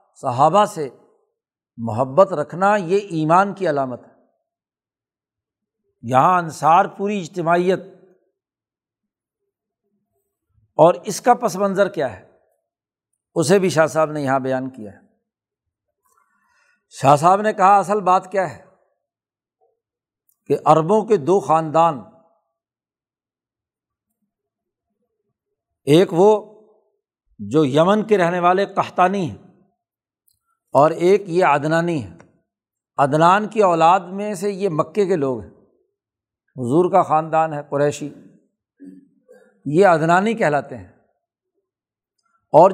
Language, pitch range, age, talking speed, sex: Urdu, 155-210 Hz, 60-79, 105 wpm, male